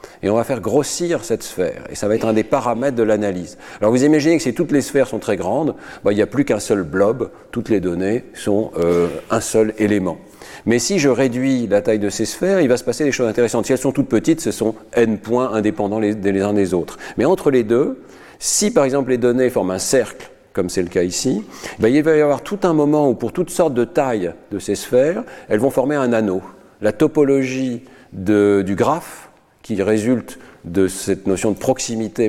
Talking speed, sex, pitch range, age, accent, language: 230 wpm, male, 95-130 Hz, 40-59, French, French